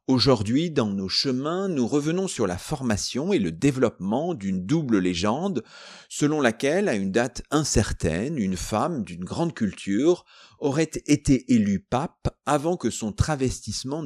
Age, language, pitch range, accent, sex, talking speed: 40-59, French, 115-175 Hz, French, male, 145 wpm